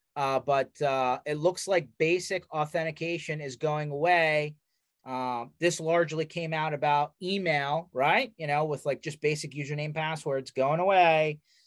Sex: male